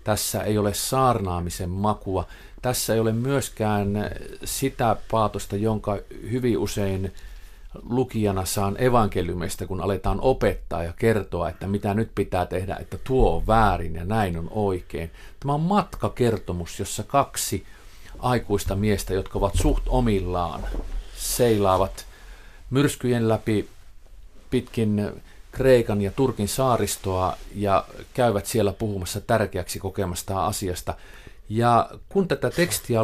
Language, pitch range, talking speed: Finnish, 95-120 Hz, 120 wpm